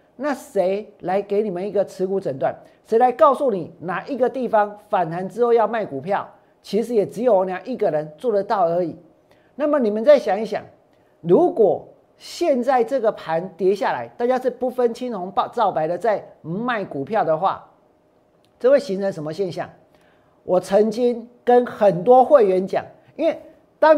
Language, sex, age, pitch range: Chinese, male, 50-69, 195-260 Hz